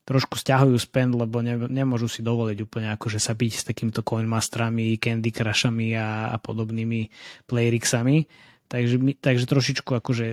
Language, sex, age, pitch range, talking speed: Slovak, male, 20-39, 115-135 Hz, 150 wpm